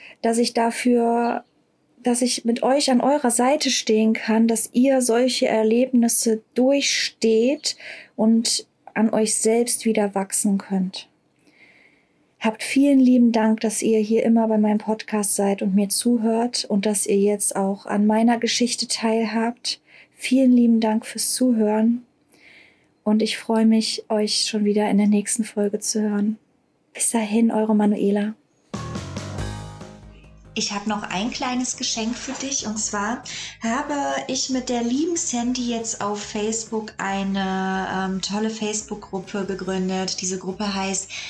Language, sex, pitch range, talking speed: German, female, 210-245 Hz, 140 wpm